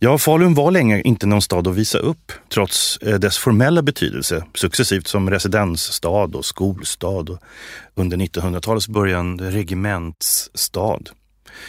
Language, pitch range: English, 90-120 Hz